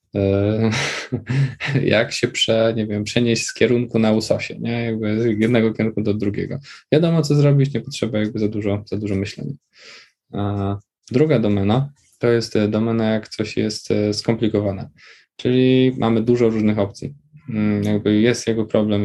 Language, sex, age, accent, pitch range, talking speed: Polish, male, 20-39, native, 105-120 Hz, 150 wpm